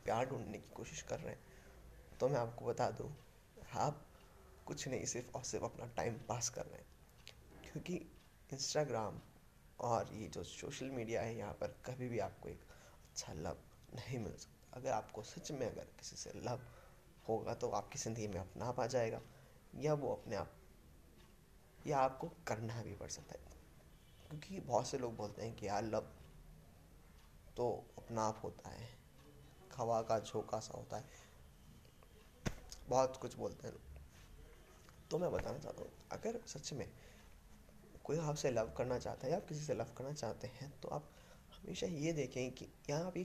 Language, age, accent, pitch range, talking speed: Hindi, 20-39, native, 85-135 Hz, 135 wpm